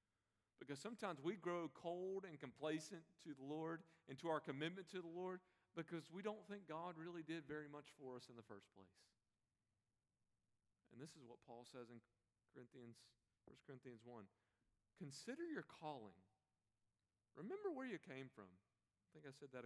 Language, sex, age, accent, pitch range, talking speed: English, male, 40-59, American, 110-180 Hz, 170 wpm